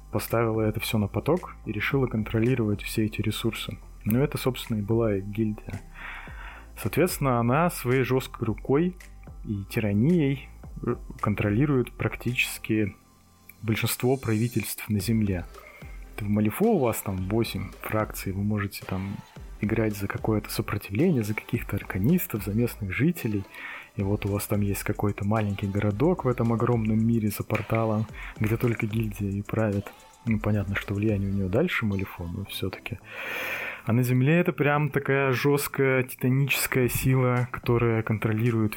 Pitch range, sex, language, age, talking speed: 105-125 Hz, male, Russian, 20-39, 140 wpm